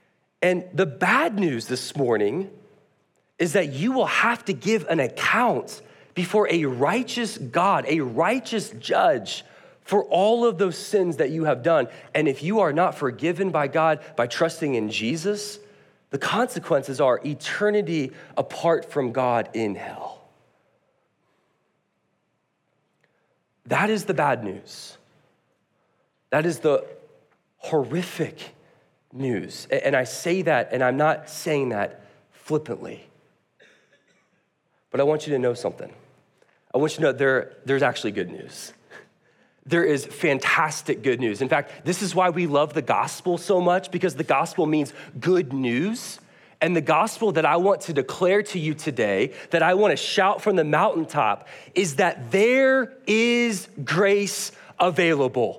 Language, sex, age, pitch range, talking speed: English, male, 30-49, 150-205 Hz, 145 wpm